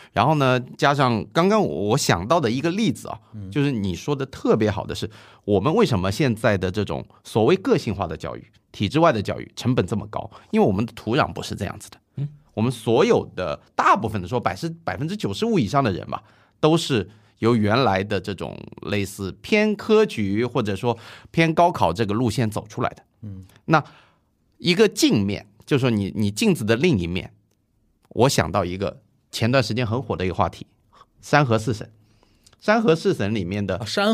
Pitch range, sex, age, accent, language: 105-145 Hz, male, 30-49, native, Chinese